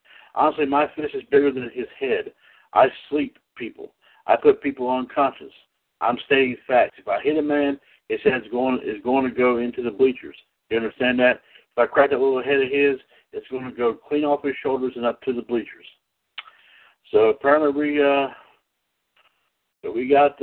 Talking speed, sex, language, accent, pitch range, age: 185 wpm, male, English, American, 125-155 Hz, 60-79